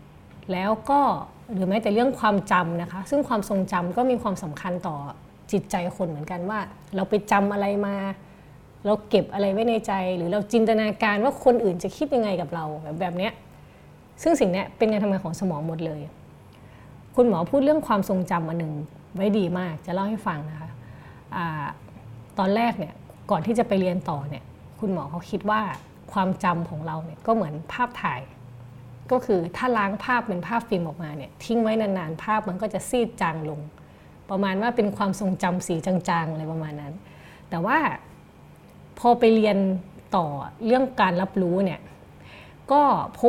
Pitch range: 170-220 Hz